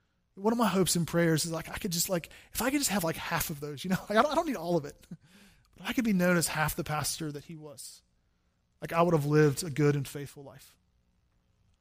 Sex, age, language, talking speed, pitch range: male, 20-39, English, 265 wpm, 150-180 Hz